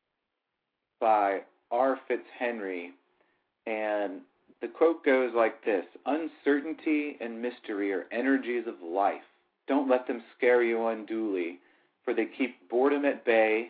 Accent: American